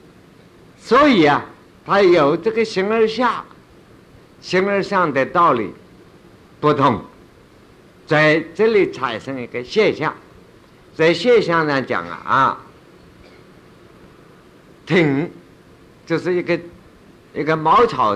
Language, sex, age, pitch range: Chinese, male, 50-69, 125-170 Hz